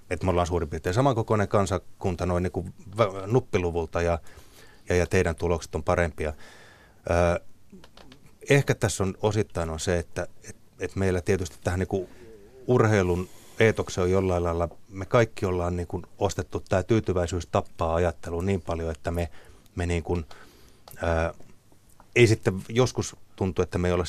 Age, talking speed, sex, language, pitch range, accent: 30-49, 160 wpm, male, Finnish, 90-110 Hz, native